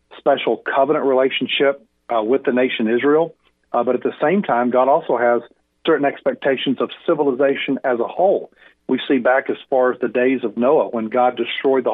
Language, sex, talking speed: English, male, 190 wpm